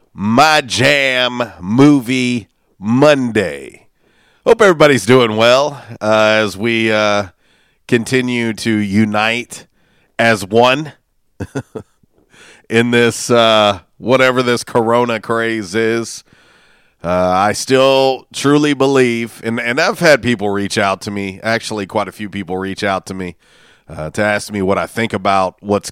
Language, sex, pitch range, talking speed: English, male, 105-130 Hz, 130 wpm